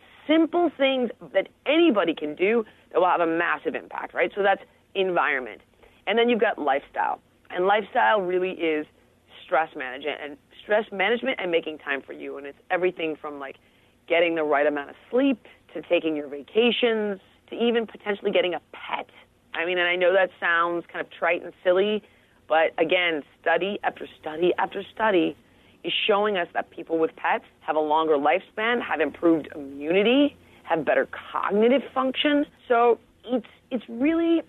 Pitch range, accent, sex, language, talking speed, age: 160-235 Hz, American, female, English, 170 wpm, 30-49